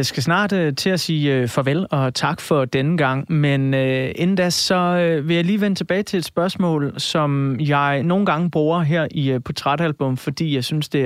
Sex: male